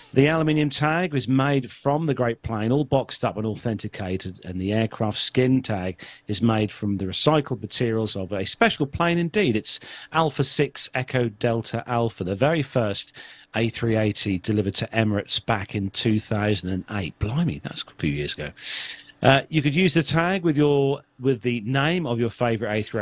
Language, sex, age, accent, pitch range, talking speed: English, male, 40-59, British, 105-135 Hz, 170 wpm